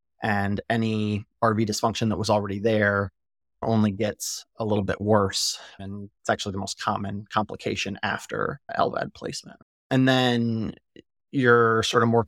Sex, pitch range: male, 100-110 Hz